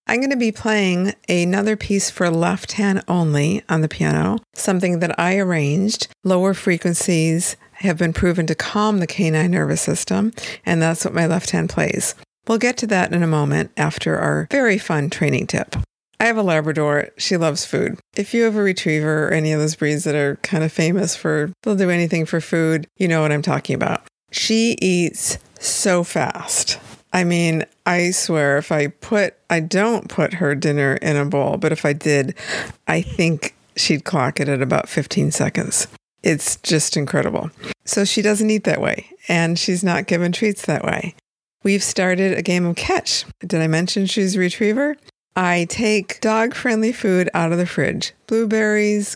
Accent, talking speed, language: American, 185 wpm, English